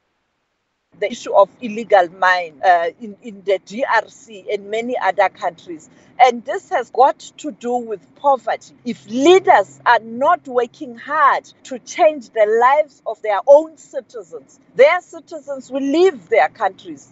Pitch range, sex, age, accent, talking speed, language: 210-290 Hz, female, 40-59, South African, 145 wpm, English